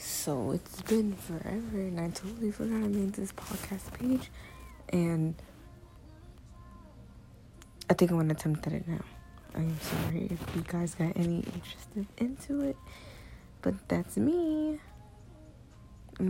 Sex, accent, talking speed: female, American, 135 wpm